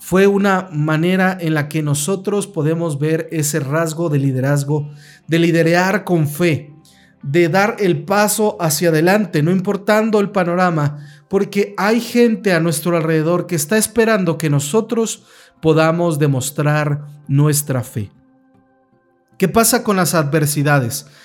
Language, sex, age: Spanish, male, 40-59